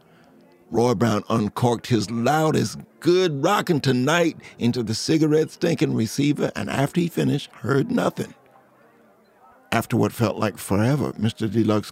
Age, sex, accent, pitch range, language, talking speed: 50-69, male, American, 110-140 Hz, English, 130 wpm